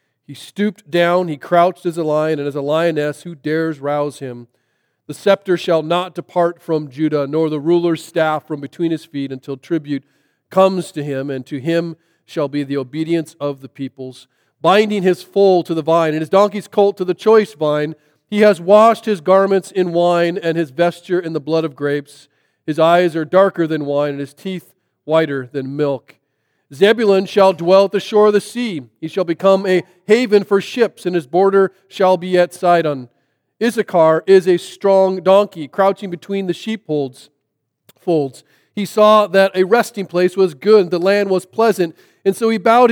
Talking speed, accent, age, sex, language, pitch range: 190 wpm, American, 40-59, male, English, 150-195 Hz